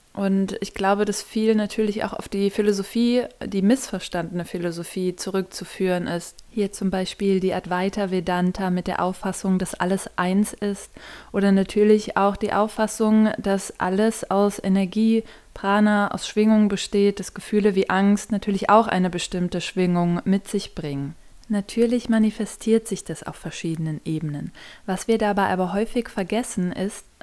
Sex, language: female, German